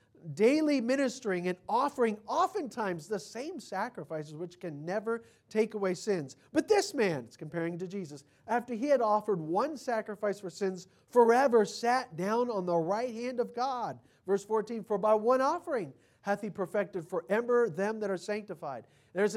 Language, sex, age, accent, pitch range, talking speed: English, male, 40-59, American, 185-245 Hz, 165 wpm